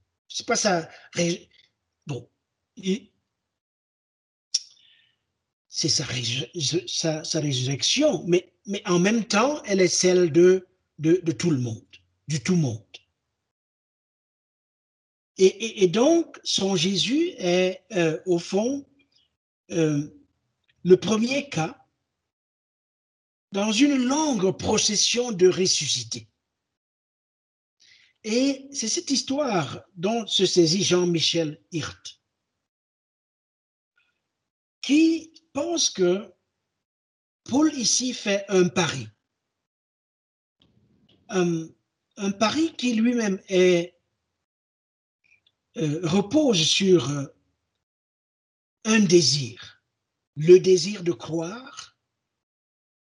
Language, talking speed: French, 90 wpm